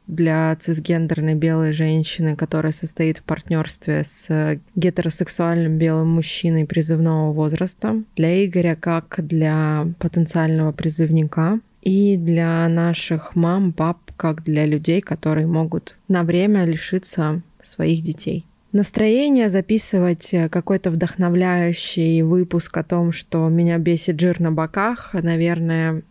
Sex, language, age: female, Russian, 20-39